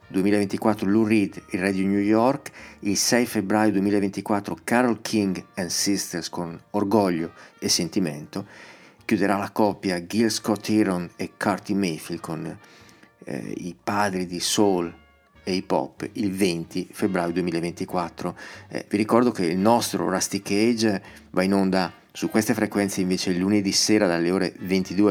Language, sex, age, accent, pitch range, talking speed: Italian, male, 40-59, native, 90-105 Hz, 145 wpm